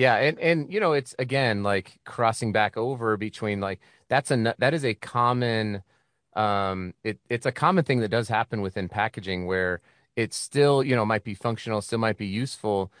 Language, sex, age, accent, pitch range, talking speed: English, male, 30-49, American, 100-130 Hz, 190 wpm